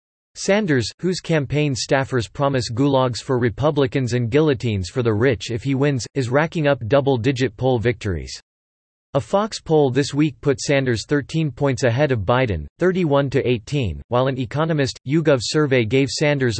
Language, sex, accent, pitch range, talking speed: English, male, American, 120-150 Hz, 150 wpm